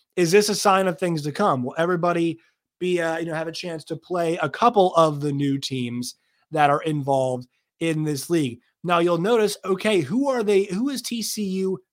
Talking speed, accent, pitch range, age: 205 wpm, American, 140-175 Hz, 30-49